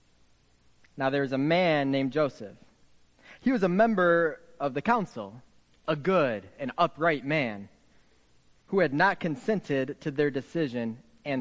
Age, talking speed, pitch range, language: 30-49, 135 wpm, 115-185 Hz, English